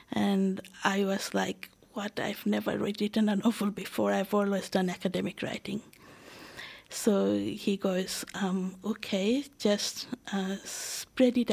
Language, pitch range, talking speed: English, 185-215 Hz, 130 wpm